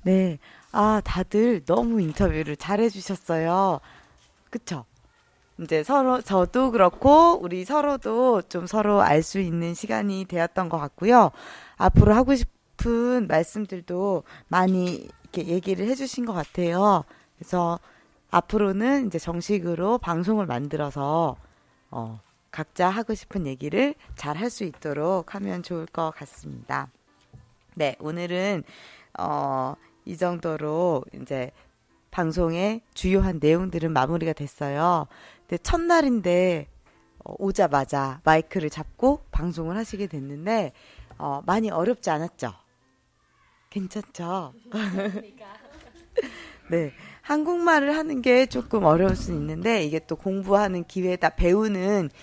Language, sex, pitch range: Korean, female, 160-220 Hz